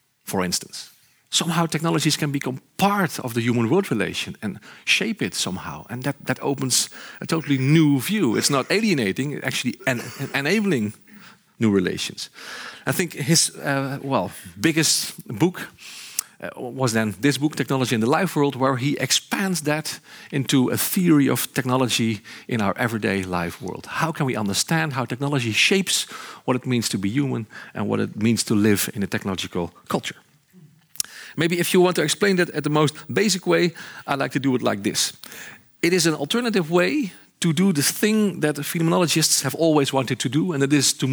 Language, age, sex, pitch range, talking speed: Dutch, 50-69, male, 125-160 Hz, 185 wpm